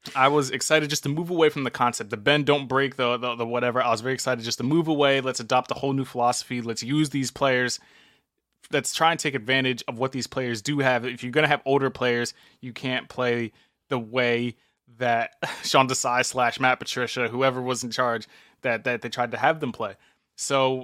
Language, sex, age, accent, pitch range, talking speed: English, male, 20-39, American, 120-140 Hz, 225 wpm